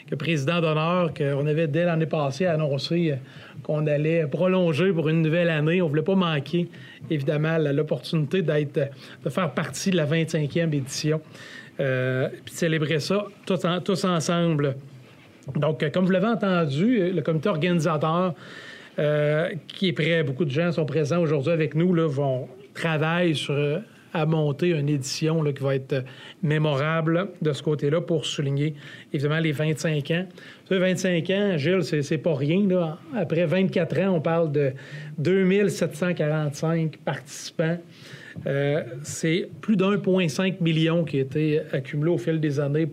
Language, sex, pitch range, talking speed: French, male, 150-175 Hz, 160 wpm